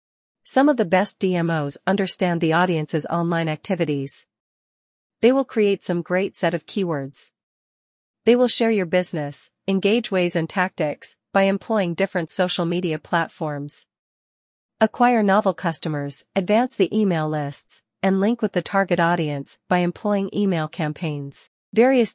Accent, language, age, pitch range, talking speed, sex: American, English, 40-59, 160-200 Hz, 140 wpm, female